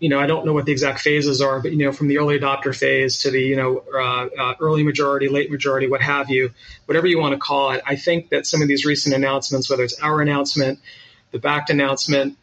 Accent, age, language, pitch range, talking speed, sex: American, 40-59, English, 135-145 Hz, 250 wpm, male